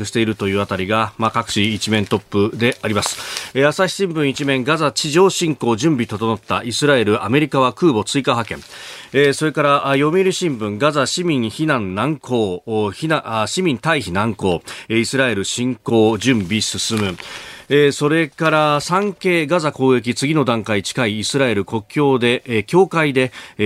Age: 40-59